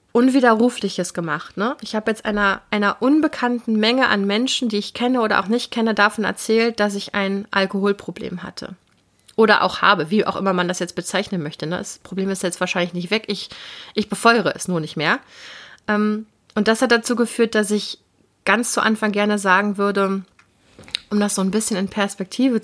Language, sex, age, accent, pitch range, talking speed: German, female, 30-49, German, 195-230 Hz, 185 wpm